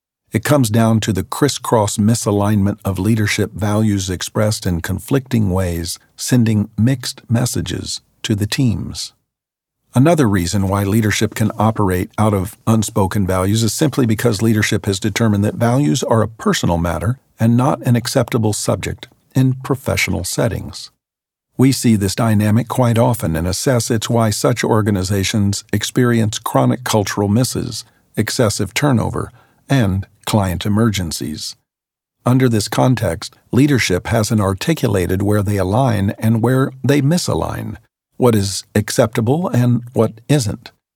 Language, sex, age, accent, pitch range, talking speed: English, male, 50-69, American, 100-125 Hz, 130 wpm